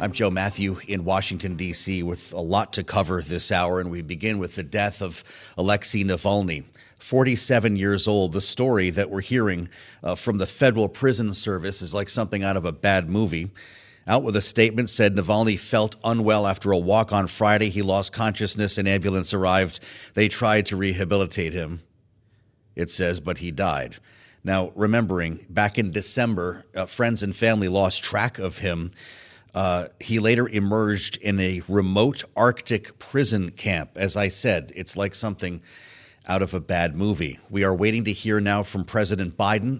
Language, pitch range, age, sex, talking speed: English, 90-110 Hz, 40-59, male, 175 wpm